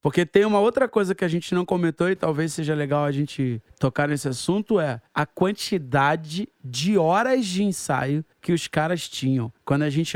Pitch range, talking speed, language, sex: 140-185 Hz, 195 wpm, Portuguese, male